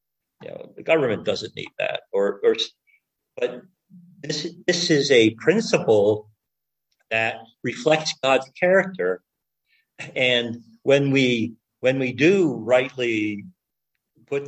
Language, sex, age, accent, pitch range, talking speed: English, male, 50-69, American, 115-180 Hz, 110 wpm